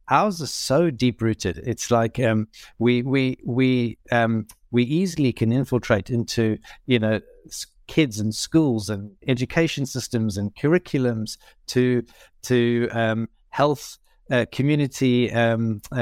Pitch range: 115-135 Hz